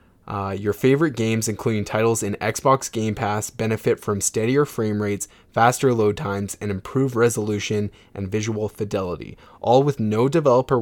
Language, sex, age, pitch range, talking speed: English, male, 20-39, 100-115 Hz, 155 wpm